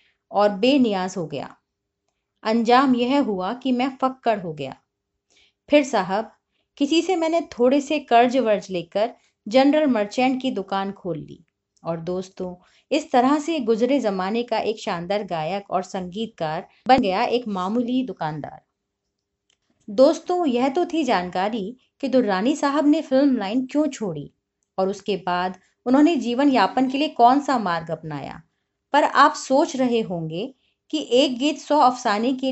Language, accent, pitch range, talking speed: Hindi, native, 190-275 Hz, 150 wpm